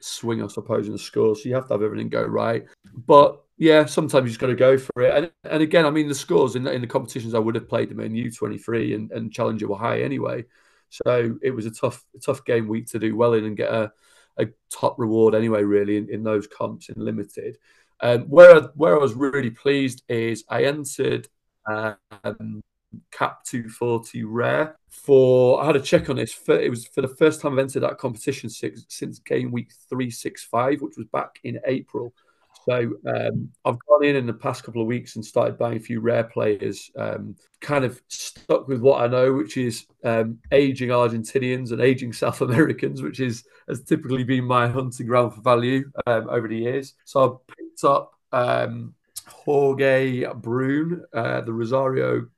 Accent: British